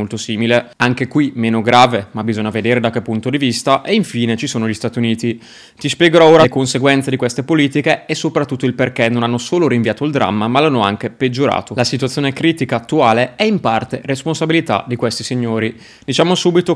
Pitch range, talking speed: 115-140 Hz, 200 wpm